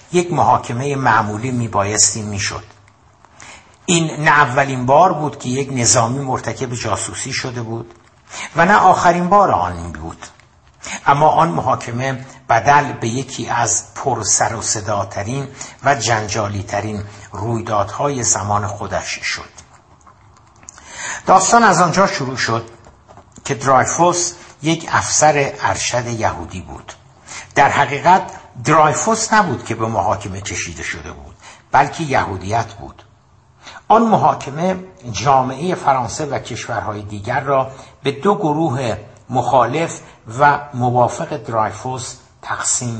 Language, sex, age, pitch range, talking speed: Persian, male, 60-79, 110-145 Hz, 115 wpm